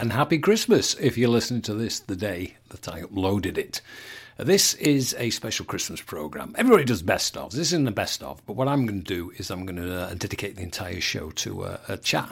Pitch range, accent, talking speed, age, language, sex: 95-130 Hz, British, 235 wpm, 60-79, English, male